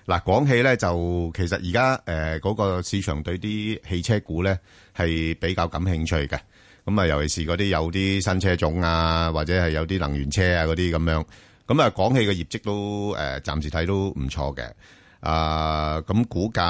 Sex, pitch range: male, 80-105 Hz